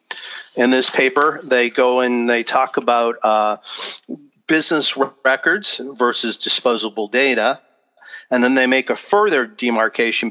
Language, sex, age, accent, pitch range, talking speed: English, male, 40-59, American, 115-130 Hz, 130 wpm